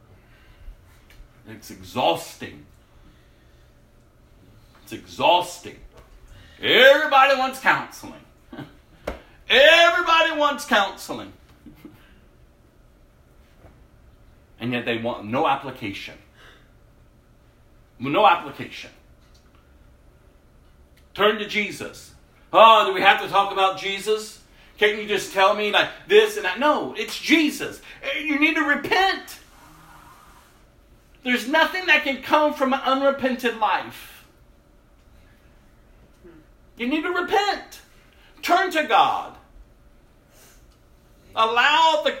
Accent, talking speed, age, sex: American, 90 wpm, 50-69, male